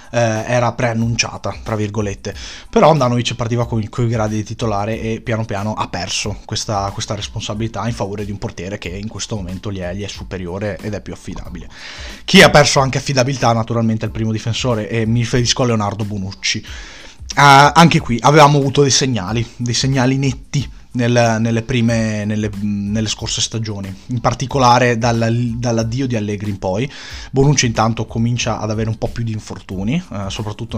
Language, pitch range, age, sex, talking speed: Italian, 105-125 Hz, 20-39, male, 180 wpm